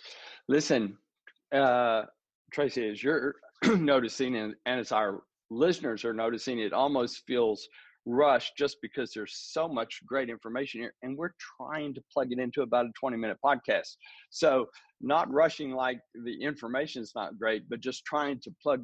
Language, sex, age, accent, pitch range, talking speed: English, male, 50-69, American, 120-150 Hz, 160 wpm